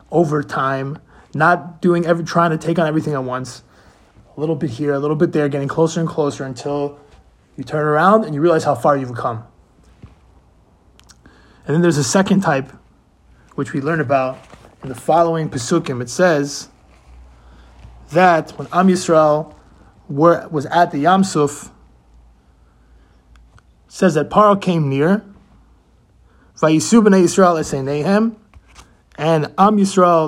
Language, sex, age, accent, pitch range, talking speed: English, male, 30-49, American, 135-180 Hz, 140 wpm